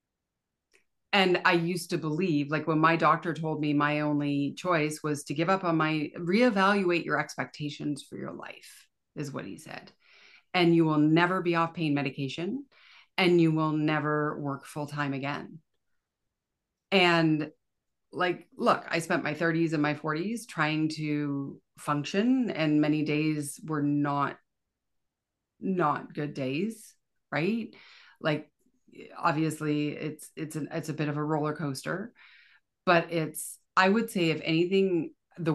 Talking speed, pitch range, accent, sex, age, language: 150 wpm, 150-175 Hz, American, female, 30-49, English